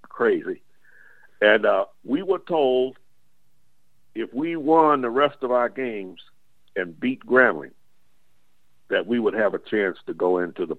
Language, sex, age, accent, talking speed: English, male, 60-79, American, 150 wpm